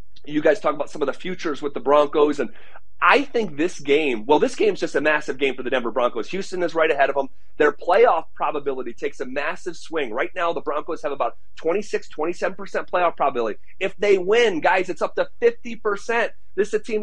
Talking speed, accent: 220 wpm, American